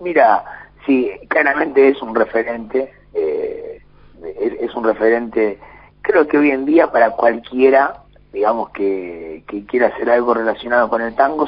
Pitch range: 120-170 Hz